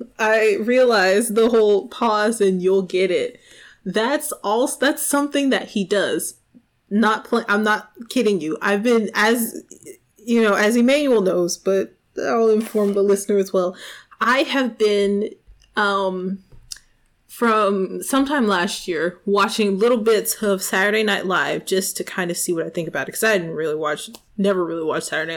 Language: English